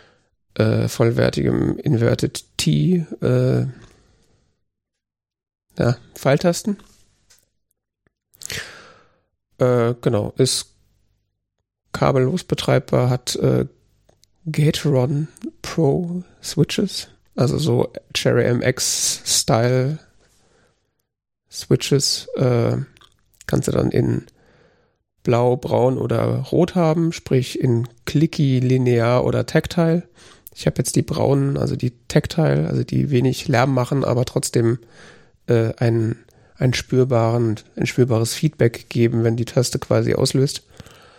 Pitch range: 110-140 Hz